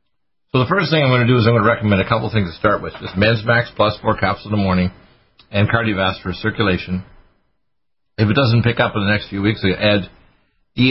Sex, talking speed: male, 235 wpm